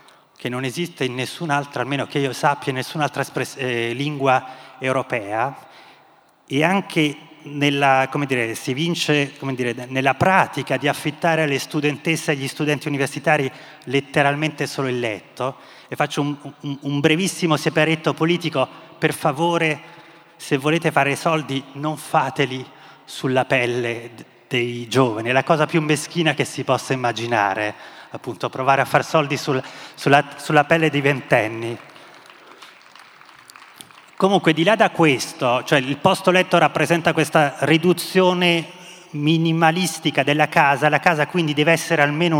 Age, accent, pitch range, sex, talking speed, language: 30-49, native, 130-160 Hz, male, 140 wpm, Italian